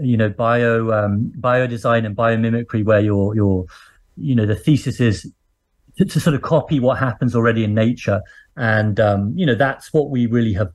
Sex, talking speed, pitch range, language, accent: male, 190 wpm, 110-130 Hz, English, British